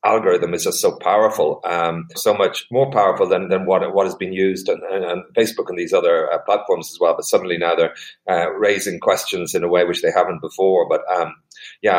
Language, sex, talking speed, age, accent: English, male, 225 wpm, 30-49, Irish